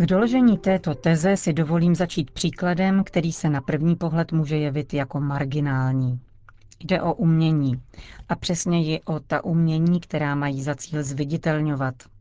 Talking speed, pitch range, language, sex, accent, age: 145 wpm, 135-165 Hz, Czech, female, native, 40-59